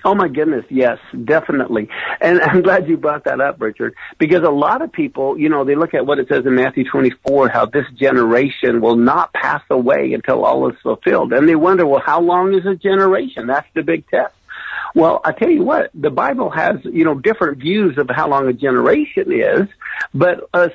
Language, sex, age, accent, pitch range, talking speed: English, male, 50-69, American, 135-210 Hz, 210 wpm